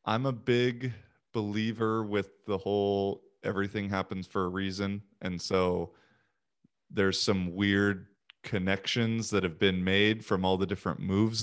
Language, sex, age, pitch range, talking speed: English, male, 20-39, 100-115 Hz, 140 wpm